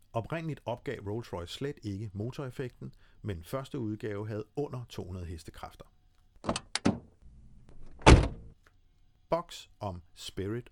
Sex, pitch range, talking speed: male, 95-130 Hz, 90 wpm